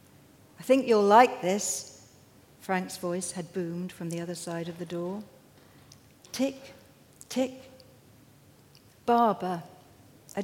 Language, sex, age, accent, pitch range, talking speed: English, female, 60-79, British, 175-260 Hz, 115 wpm